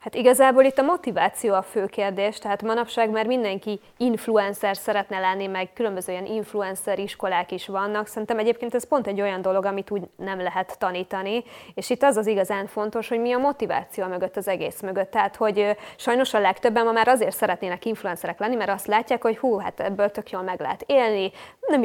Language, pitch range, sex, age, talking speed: Hungarian, 195-245 Hz, female, 20-39, 200 wpm